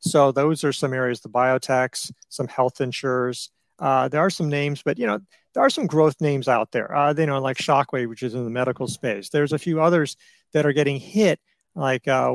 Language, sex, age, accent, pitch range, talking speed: English, male, 40-59, American, 135-165 Hz, 225 wpm